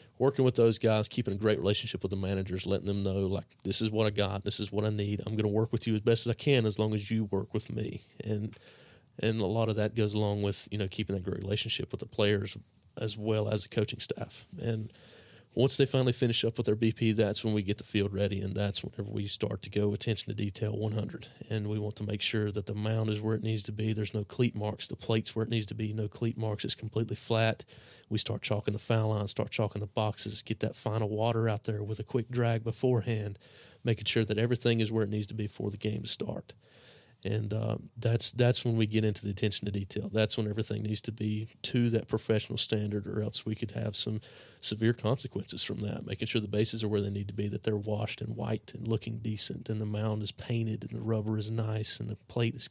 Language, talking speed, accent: English, 255 wpm, American